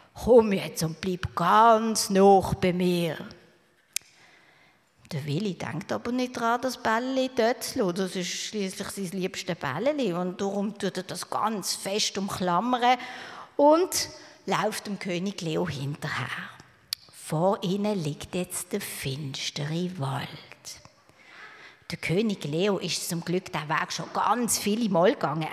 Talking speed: 130 wpm